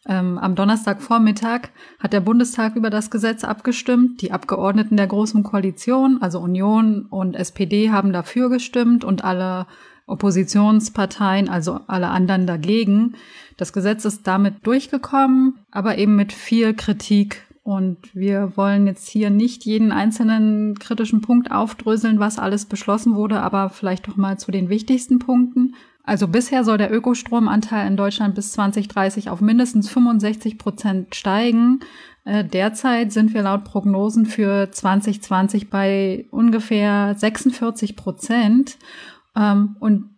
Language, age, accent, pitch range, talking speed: German, 20-39, German, 195-230 Hz, 130 wpm